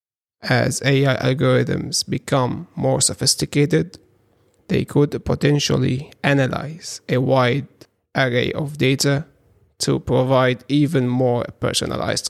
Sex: male